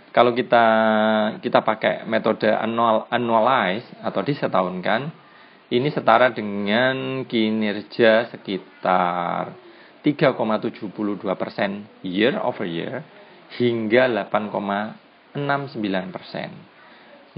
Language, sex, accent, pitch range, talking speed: Indonesian, male, native, 105-135 Hz, 65 wpm